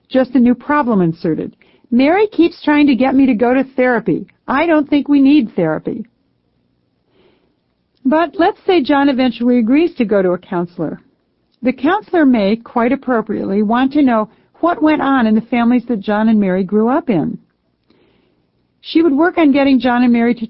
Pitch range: 215-270 Hz